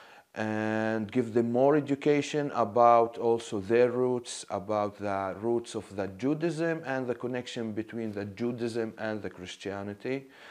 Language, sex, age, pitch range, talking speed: English, male, 30-49, 110-140 Hz, 135 wpm